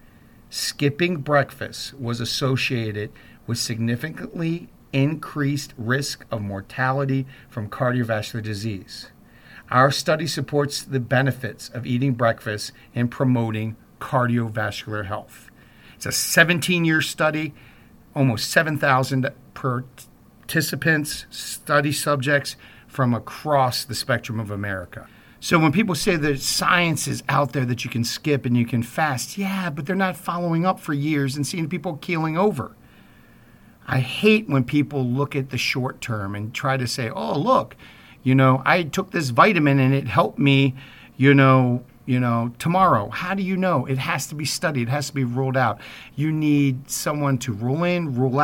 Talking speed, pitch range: 150 wpm, 120-150 Hz